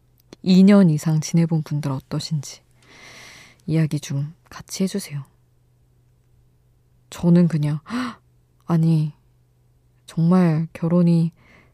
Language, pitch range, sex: Korean, 130-175 Hz, female